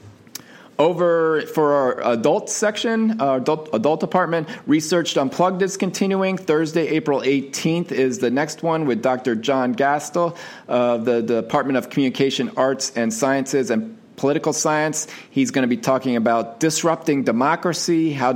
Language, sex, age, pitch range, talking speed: English, male, 40-59, 120-155 Hz, 145 wpm